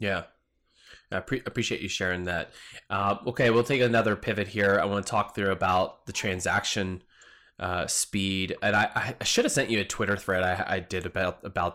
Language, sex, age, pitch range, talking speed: English, male, 20-39, 95-120 Hz, 195 wpm